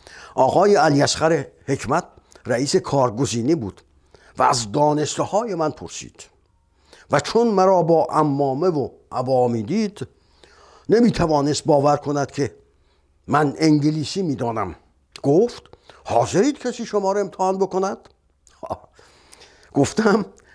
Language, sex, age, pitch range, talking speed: Persian, male, 50-69, 125-185 Hz, 100 wpm